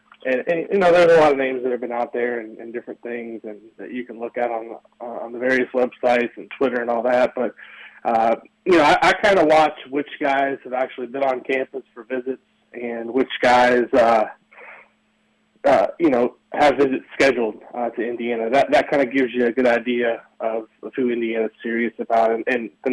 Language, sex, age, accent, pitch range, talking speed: English, male, 20-39, American, 120-130 Hz, 220 wpm